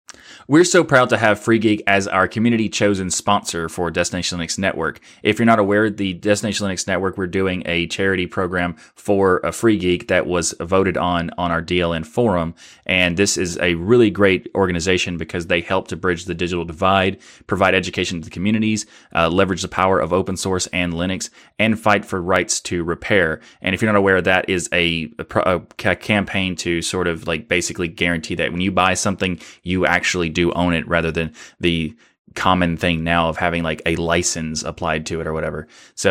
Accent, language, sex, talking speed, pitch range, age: American, English, male, 205 wpm, 85-100 Hz, 30-49